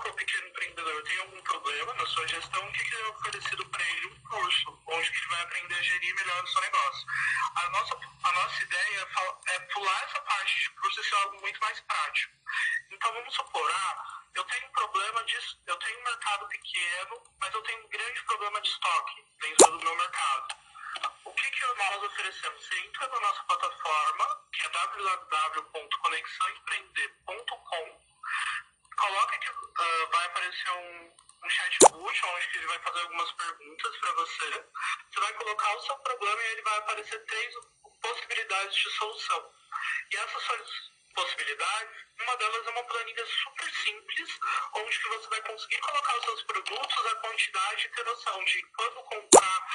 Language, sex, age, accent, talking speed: Portuguese, male, 40-59, Brazilian, 170 wpm